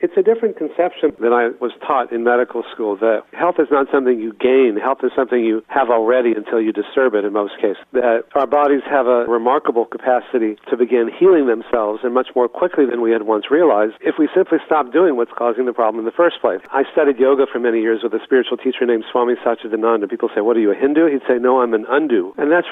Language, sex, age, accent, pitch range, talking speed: English, male, 50-69, American, 115-140 Hz, 245 wpm